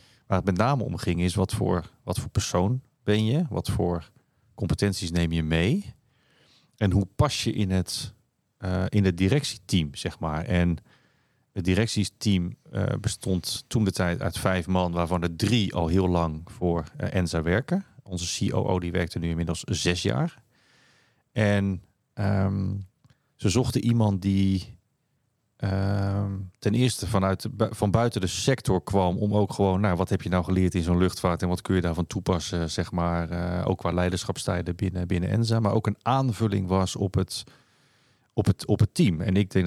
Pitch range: 90-115 Hz